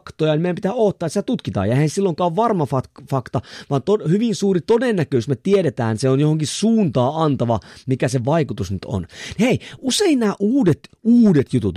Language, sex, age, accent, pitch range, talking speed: Finnish, male, 30-49, native, 135-215 Hz, 180 wpm